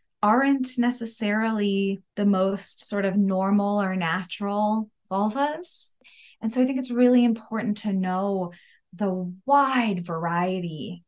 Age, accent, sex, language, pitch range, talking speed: 20-39, American, female, English, 175-225 Hz, 120 wpm